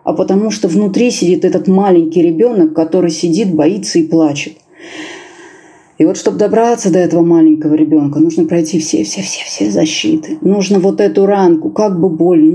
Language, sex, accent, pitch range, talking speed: Russian, female, native, 160-245 Hz, 155 wpm